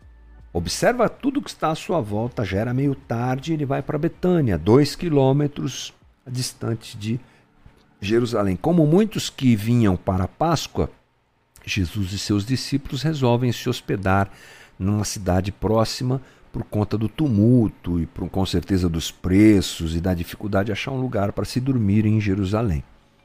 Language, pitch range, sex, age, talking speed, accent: Portuguese, 100-145 Hz, male, 50-69, 155 wpm, Brazilian